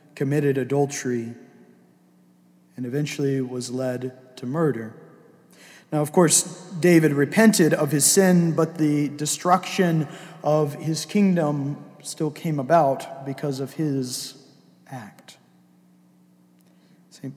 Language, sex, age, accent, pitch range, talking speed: English, male, 50-69, American, 120-150 Hz, 105 wpm